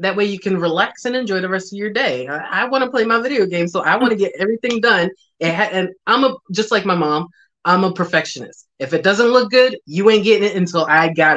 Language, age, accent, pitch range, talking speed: English, 20-39, American, 160-195 Hz, 255 wpm